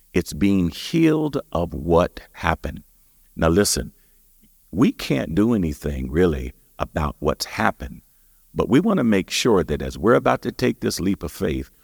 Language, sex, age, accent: English, male, 50-69, American